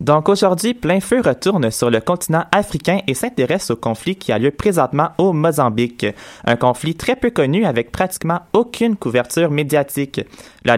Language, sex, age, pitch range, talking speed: French, male, 20-39, 130-180 Hz, 165 wpm